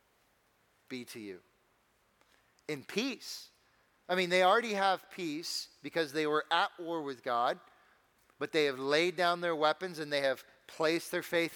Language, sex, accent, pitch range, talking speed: English, male, American, 140-165 Hz, 160 wpm